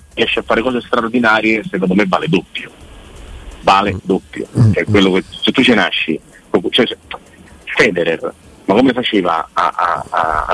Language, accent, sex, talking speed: Italian, native, male, 135 wpm